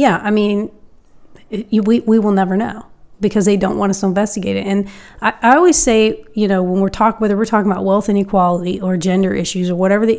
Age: 30-49